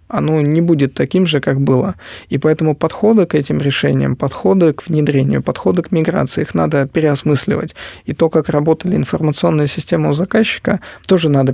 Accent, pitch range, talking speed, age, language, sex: native, 140-165 Hz, 165 wpm, 20-39, Russian, male